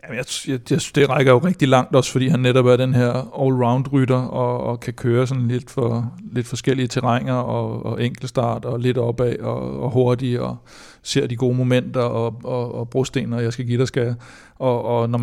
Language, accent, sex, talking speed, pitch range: Danish, native, male, 215 wpm, 115-130 Hz